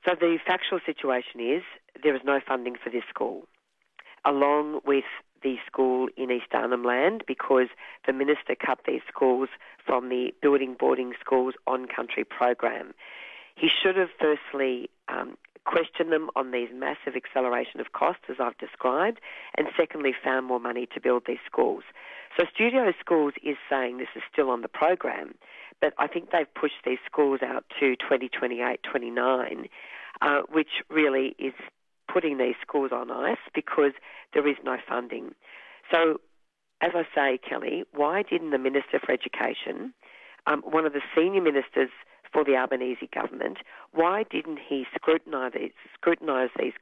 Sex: female